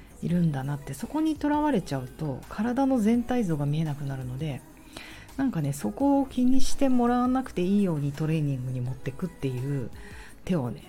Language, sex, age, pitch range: Japanese, female, 40-59, 150-210 Hz